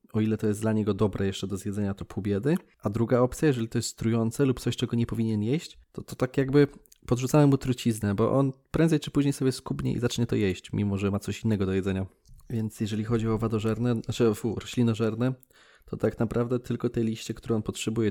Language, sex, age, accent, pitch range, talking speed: Polish, male, 20-39, native, 105-130 Hz, 220 wpm